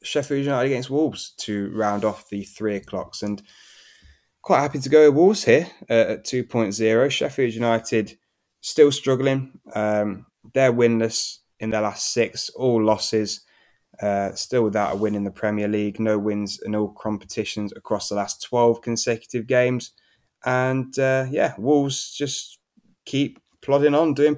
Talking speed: 155 wpm